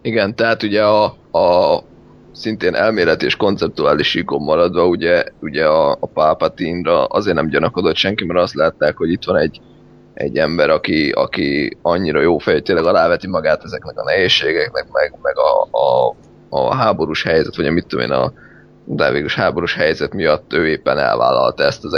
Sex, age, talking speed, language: male, 20-39, 165 wpm, Hungarian